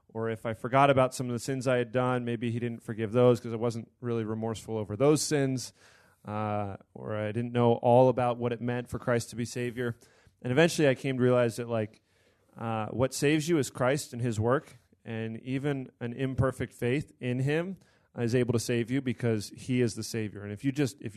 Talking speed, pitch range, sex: 225 wpm, 110-130 Hz, male